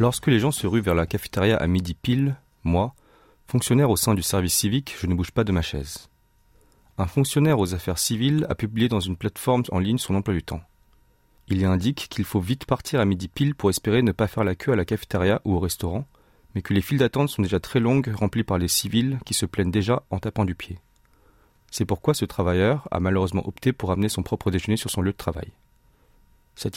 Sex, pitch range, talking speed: male, 95-120 Hz, 230 wpm